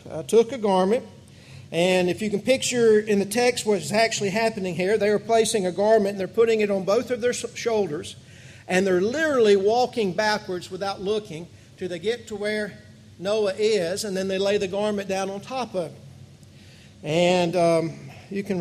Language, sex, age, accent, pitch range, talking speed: English, male, 50-69, American, 175-220 Hz, 200 wpm